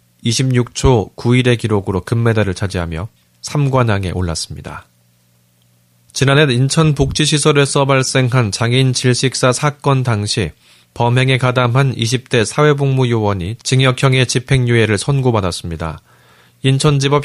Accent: native